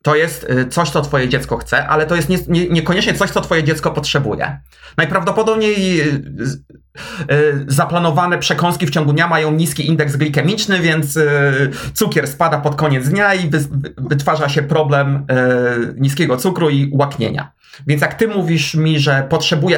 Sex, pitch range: male, 145-175 Hz